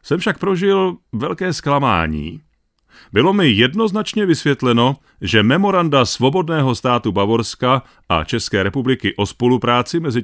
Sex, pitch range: male, 110-165 Hz